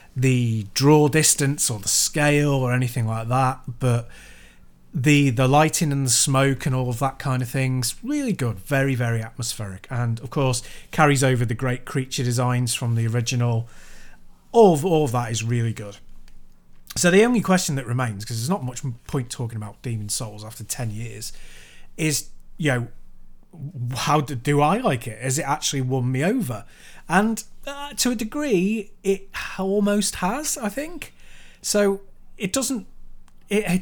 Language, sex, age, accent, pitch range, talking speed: English, male, 30-49, British, 110-155 Hz, 165 wpm